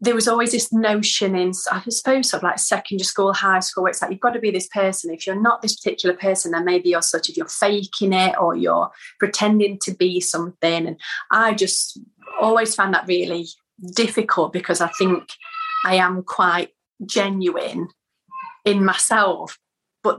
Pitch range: 180-220 Hz